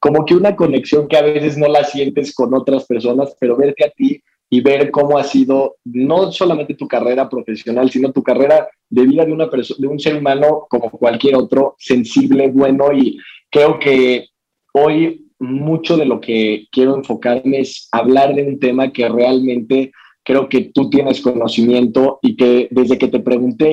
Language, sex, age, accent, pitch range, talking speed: Spanish, male, 20-39, Mexican, 120-145 Hz, 180 wpm